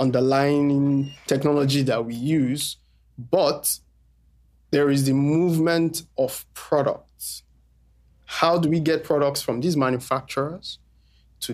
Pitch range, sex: 120-150 Hz, male